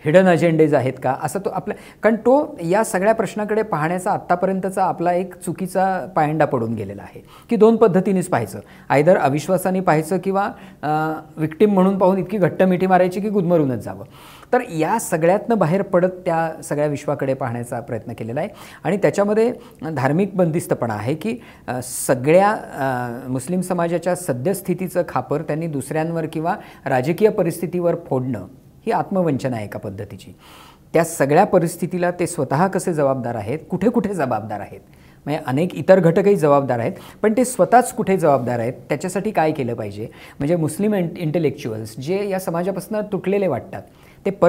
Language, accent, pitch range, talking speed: Marathi, native, 140-190 Hz, 135 wpm